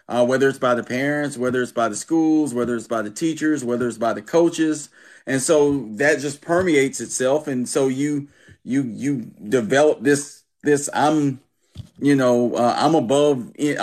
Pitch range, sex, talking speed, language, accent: 125-150 Hz, male, 180 wpm, English, American